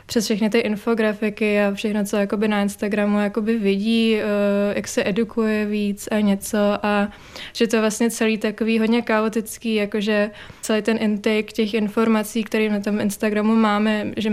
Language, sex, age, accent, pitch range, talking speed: Czech, female, 20-39, native, 205-220 Hz, 165 wpm